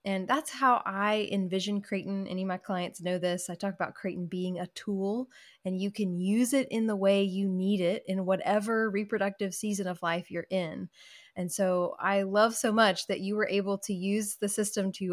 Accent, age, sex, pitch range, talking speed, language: American, 20-39, female, 180-215 Hz, 210 wpm, English